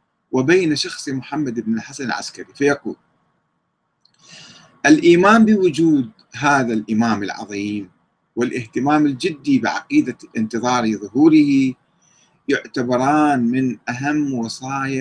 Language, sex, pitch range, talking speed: Arabic, male, 115-155 Hz, 85 wpm